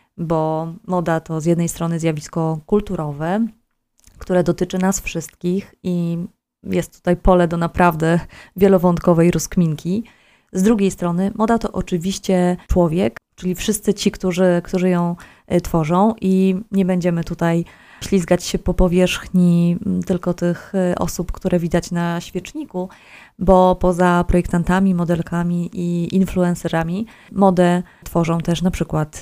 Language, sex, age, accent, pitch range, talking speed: Polish, female, 20-39, native, 170-195 Hz, 125 wpm